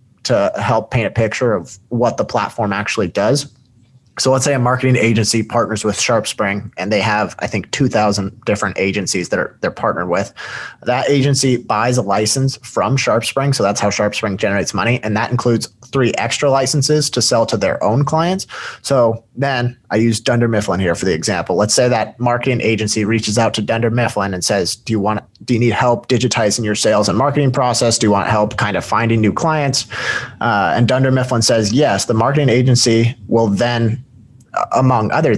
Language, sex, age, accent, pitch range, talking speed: English, male, 30-49, American, 110-125 Hz, 195 wpm